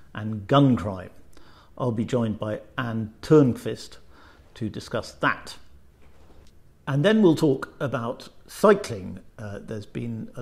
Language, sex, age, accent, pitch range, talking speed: English, male, 50-69, British, 105-130 Hz, 125 wpm